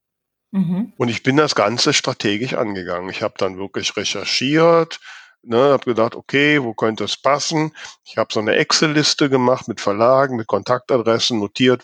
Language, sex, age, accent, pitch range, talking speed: German, male, 50-69, German, 105-135 Hz, 155 wpm